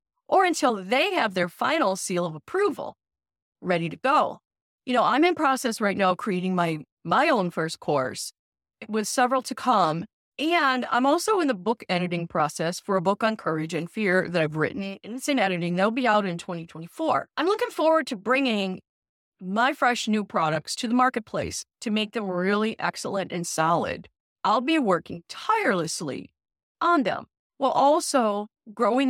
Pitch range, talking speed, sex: 175-255 Hz, 175 wpm, female